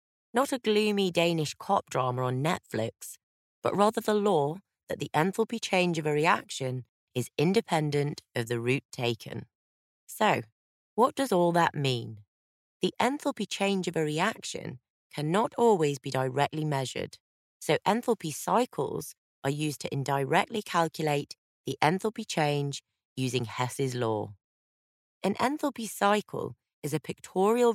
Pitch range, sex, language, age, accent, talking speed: 125-190 Hz, female, English, 30-49, British, 135 wpm